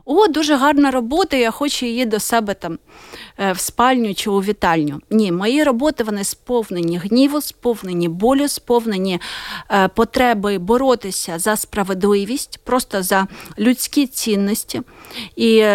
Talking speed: 125 wpm